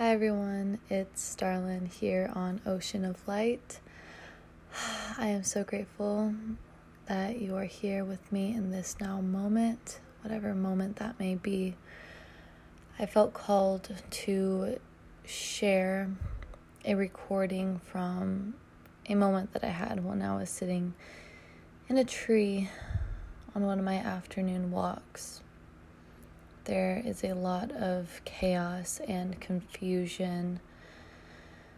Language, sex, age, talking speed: English, female, 20-39, 115 wpm